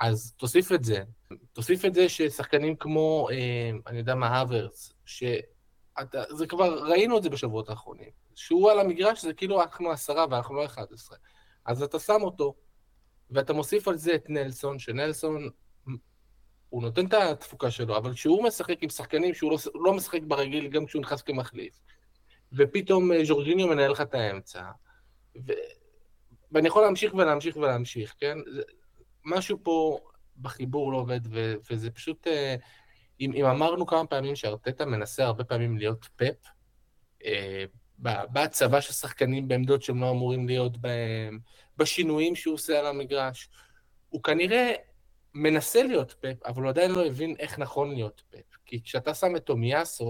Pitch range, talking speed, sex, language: 120-160 Hz, 155 wpm, male, Hebrew